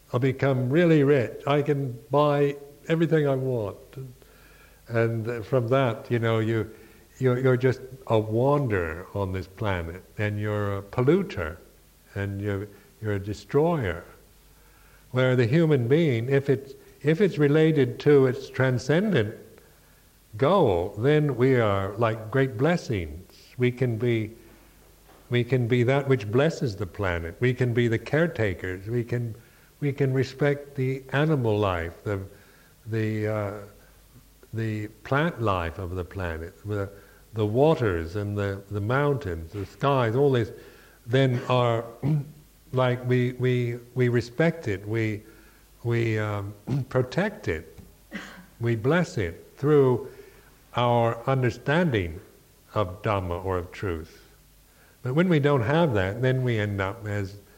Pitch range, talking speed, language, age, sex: 105-135 Hz, 135 wpm, English, 60-79, male